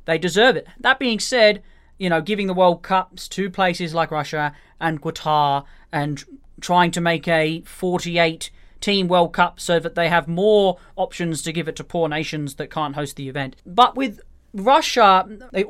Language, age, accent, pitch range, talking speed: English, 20-39, Australian, 160-195 Hz, 180 wpm